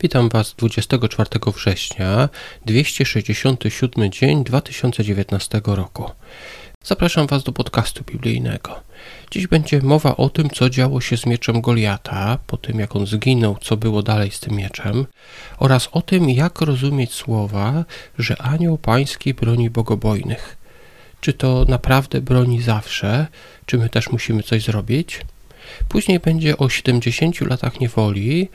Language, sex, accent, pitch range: Polish, male, native, 110-140 Hz